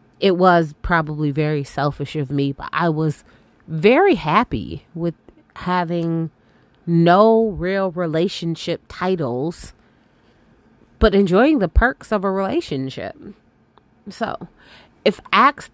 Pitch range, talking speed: 145-190 Hz, 105 wpm